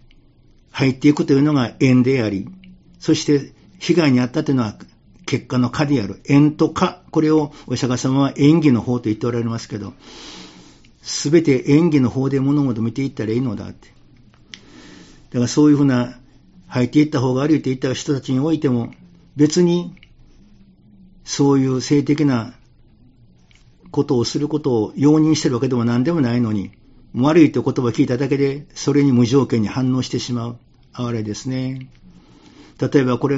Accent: native